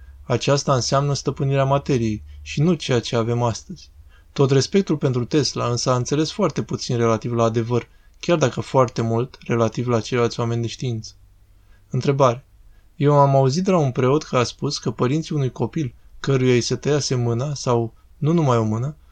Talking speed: 180 wpm